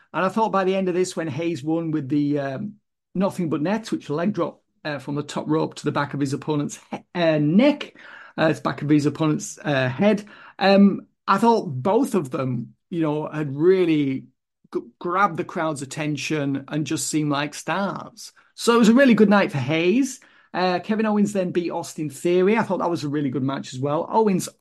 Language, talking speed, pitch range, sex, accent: English, 215 wpm, 150-195 Hz, male, British